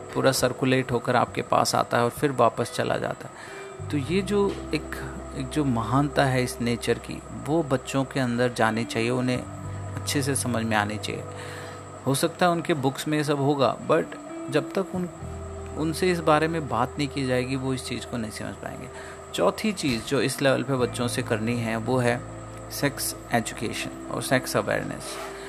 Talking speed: 190 wpm